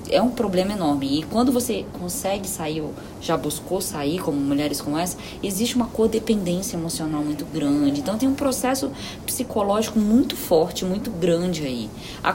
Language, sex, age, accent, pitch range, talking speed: Portuguese, female, 20-39, Brazilian, 170-245 Hz, 165 wpm